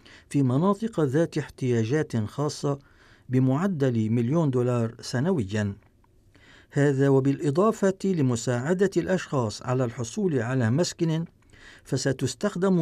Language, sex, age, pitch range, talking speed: Arabic, male, 50-69, 115-160 Hz, 85 wpm